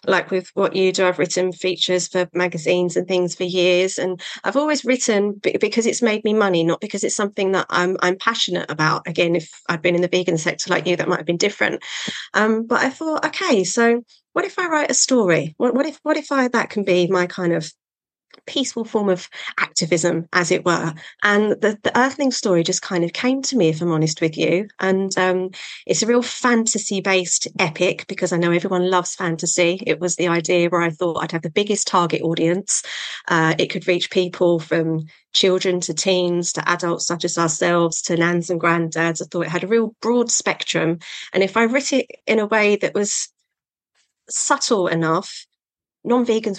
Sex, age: female, 30-49